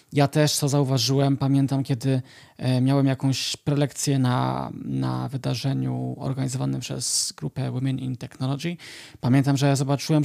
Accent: native